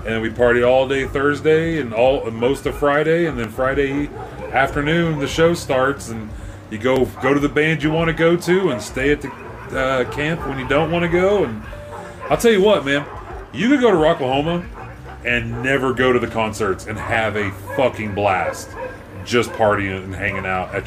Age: 30-49